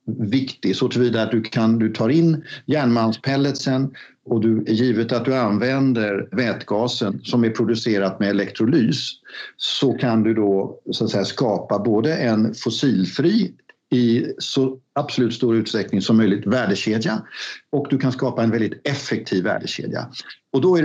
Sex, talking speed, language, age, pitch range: male, 150 wpm, Swedish, 50-69, 105-130 Hz